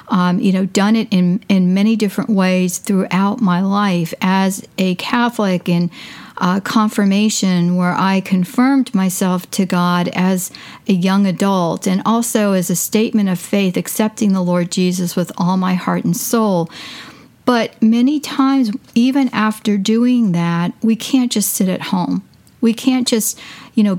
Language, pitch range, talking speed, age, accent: English, 185-230 Hz, 160 wpm, 50-69, American